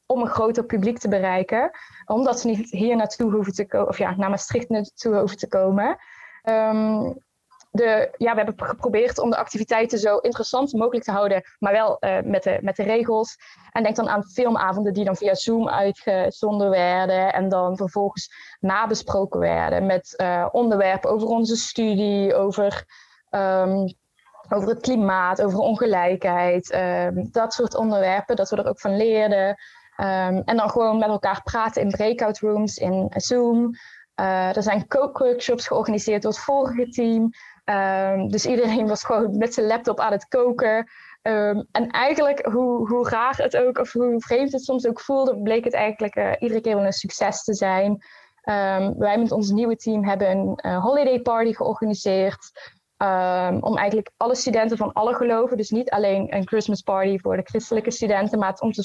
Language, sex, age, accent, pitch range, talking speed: Dutch, female, 20-39, Dutch, 195-235 Hz, 170 wpm